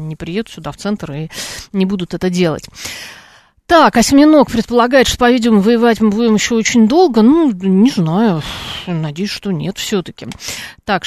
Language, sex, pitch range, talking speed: Russian, female, 170-210 Hz, 155 wpm